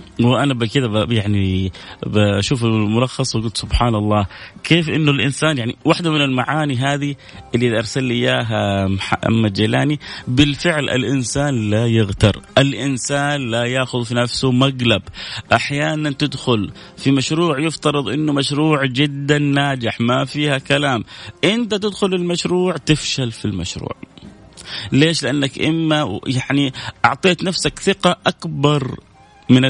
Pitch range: 115-155 Hz